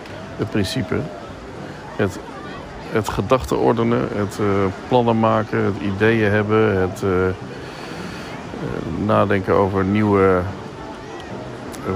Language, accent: Dutch, Dutch